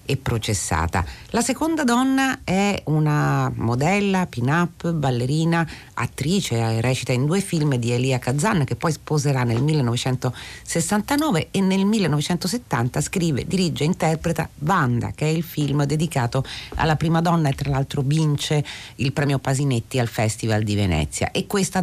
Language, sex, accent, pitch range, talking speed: Italian, female, native, 125-175 Hz, 140 wpm